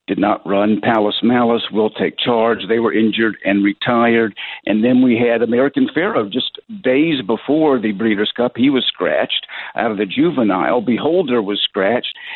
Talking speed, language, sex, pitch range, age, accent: 170 wpm, English, male, 110-135 Hz, 60-79, American